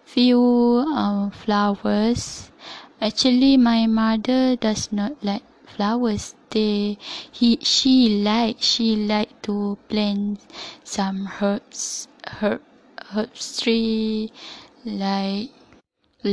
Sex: female